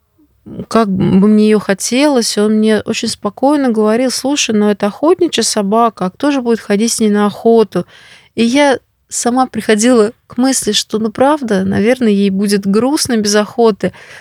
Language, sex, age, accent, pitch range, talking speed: Russian, female, 30-49, native, 200-240 Hz, 170 wpm